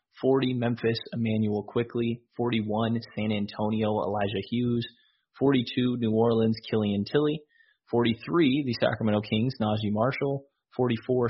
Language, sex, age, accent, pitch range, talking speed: English, male, 20-39, American, 110-125 Hz, 110 wpm